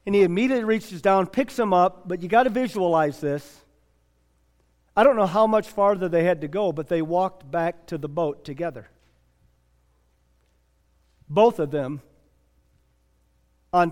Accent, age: American, 50-69